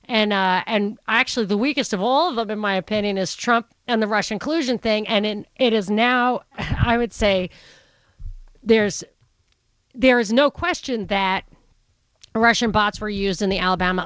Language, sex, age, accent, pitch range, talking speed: English, female, 40-59, American, 185-240 Hz, 180 wpm